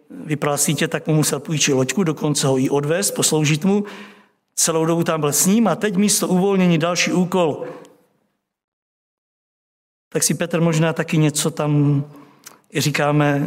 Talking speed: 145 wpm